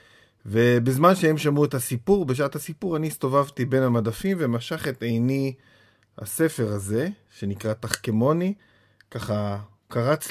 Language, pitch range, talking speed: Hebrew, 110-140 Hz, 115 wpm